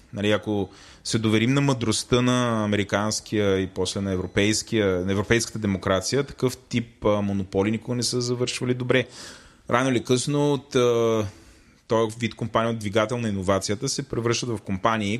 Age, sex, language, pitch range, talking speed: 20-39, male, Bulgarian, 105-125 Hz, 150 wpm